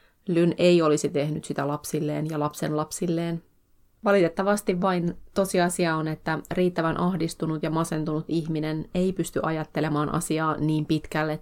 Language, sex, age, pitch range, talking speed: Finnish, female, 30-49, 155-175 Hz, 130 wpm